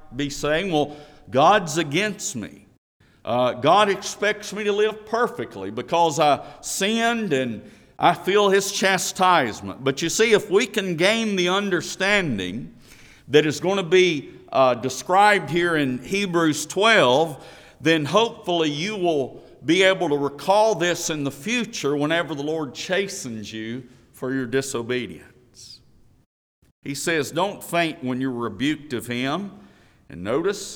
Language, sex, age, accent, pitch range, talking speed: English, male, 50-69, American, 130-185 Hz, 140 wpm